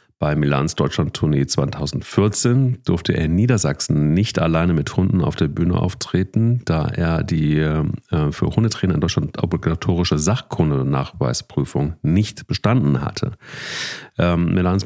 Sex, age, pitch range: male, 40-59, 85-105 Hz